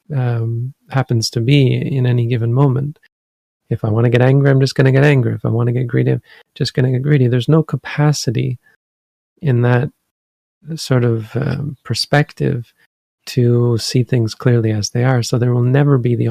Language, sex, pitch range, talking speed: English, male, 115-135 Hz, 200 wpm